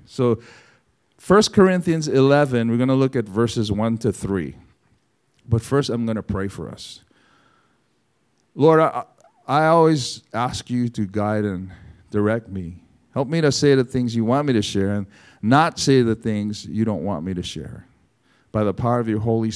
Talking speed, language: 185 wpm, English